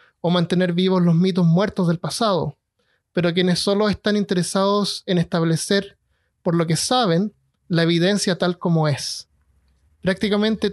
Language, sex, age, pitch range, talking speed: Spanish, male, 30-49, 170-205 Hz, 140 wpm